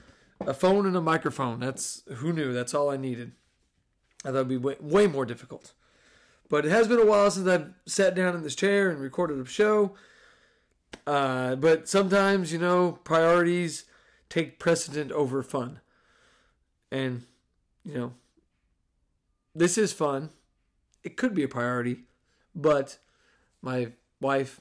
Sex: male